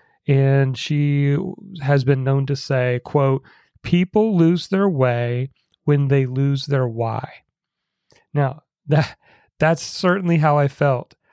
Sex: male